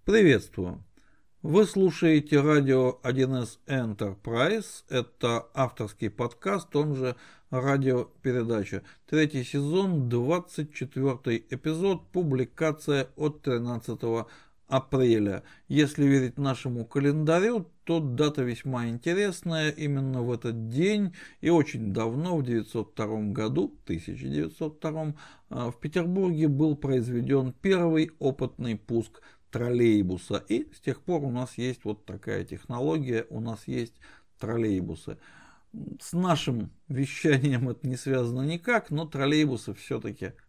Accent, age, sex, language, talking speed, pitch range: native, 50-69, male, Russian, 110 wpm, 115-155 Hz